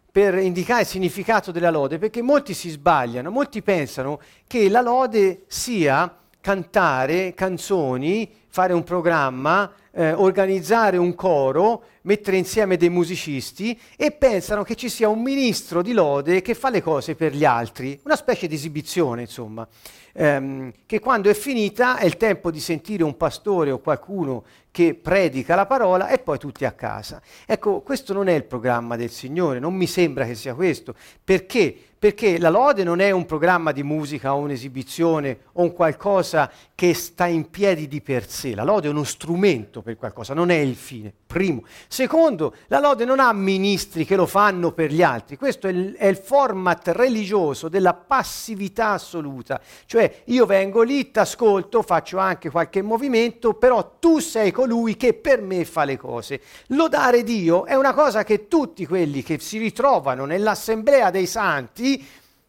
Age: 50-69